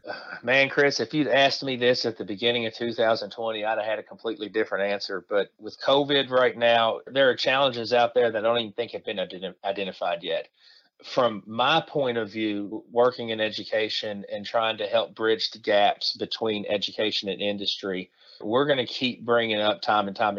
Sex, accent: male, American